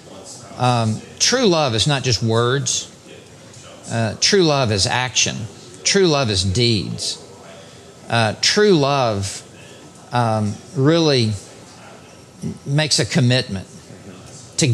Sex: male